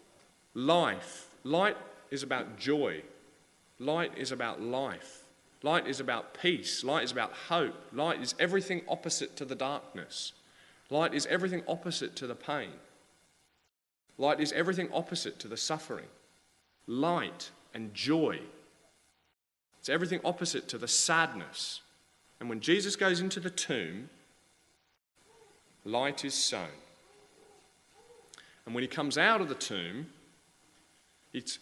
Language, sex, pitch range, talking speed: English, male, 120-175 Hz, 125 wpm